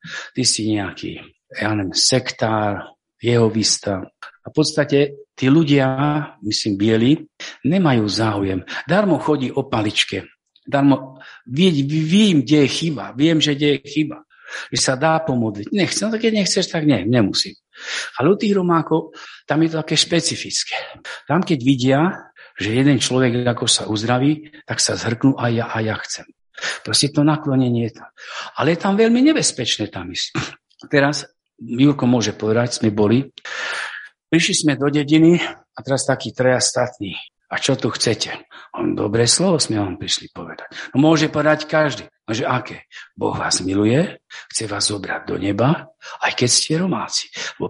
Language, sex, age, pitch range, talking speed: Slovak, male, 50-69, 115-155 Hz, 155 wpm